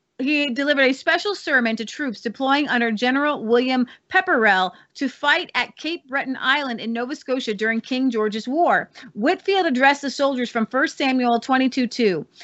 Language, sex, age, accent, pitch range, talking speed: English, female, 30-49, American, 240-310 Hz, 165 wpm